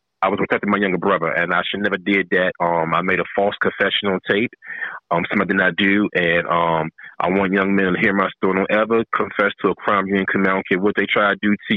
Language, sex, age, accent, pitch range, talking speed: English, male, 30-49, American, 85-100 Hz, 270 wpm